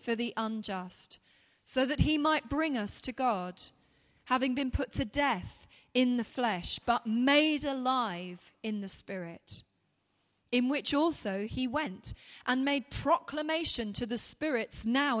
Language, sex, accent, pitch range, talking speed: English, female, British, 195-270 Hz, 145 wpm